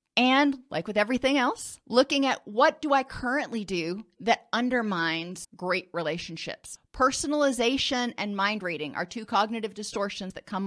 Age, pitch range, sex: 30-49, 185-240 Hz, female